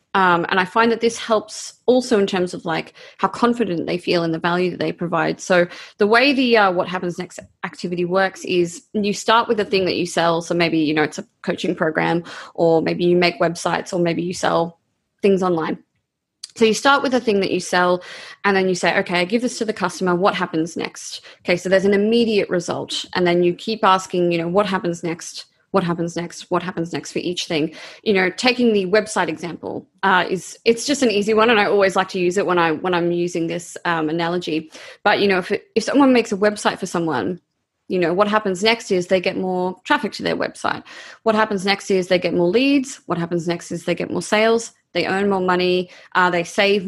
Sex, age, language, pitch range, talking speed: female, 20-39, English, 175-210 Hz, 235 wpm